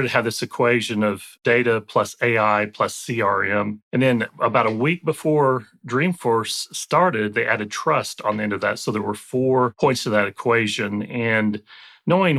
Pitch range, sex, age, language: 105-125 Hz, male, 30-49, English